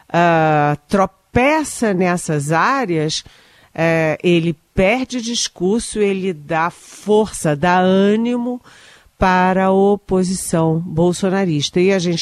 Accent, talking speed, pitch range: Brazilian, 90 wpm, 155-195 Hz